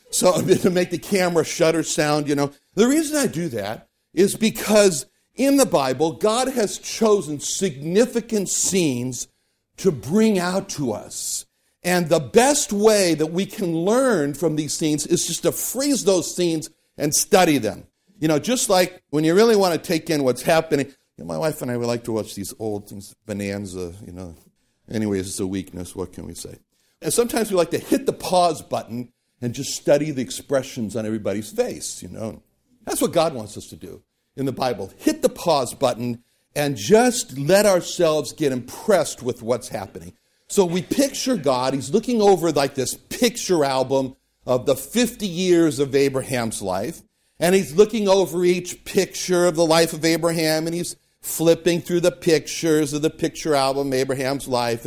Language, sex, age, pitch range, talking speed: English, male, 60-79, 125-195 Hz, 185 wpm